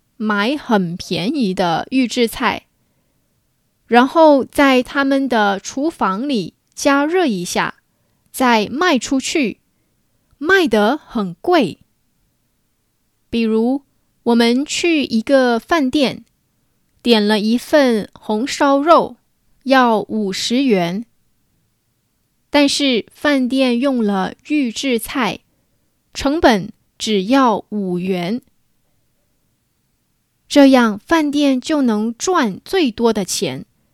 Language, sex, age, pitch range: English, female, 20-39, 210-285 Hz